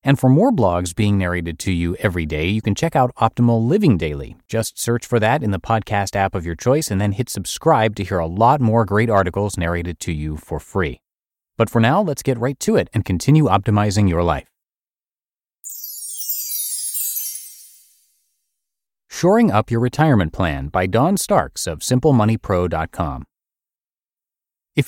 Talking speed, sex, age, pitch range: 165 wpm, male, 30-49, 90-120 Hz